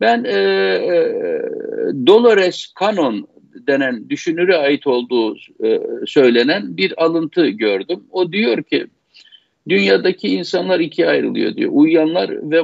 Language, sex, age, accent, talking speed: Turkish, male, 60-79, native, 110 wpm